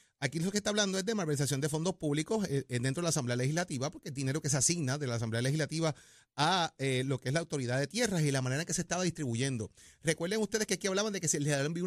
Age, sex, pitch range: 30-49, male, 130-170 Hz